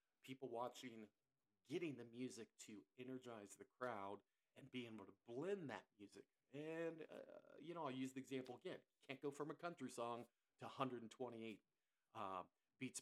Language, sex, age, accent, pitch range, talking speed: English, male, 40-59, American, 110-135 Hz, 165 wpm